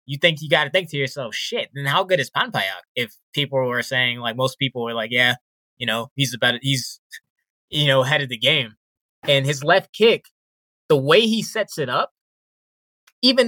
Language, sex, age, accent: English, male, 20-39, American